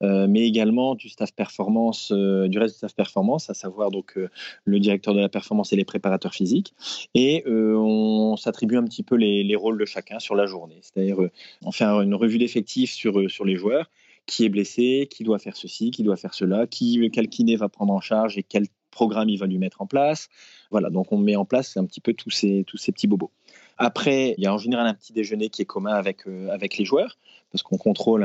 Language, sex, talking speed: French, male, 240 wpm